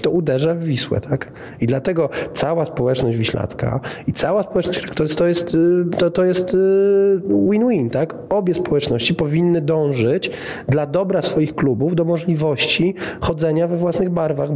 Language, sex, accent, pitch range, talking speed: Polish, male, native, 110-150 Hz, 125 wpm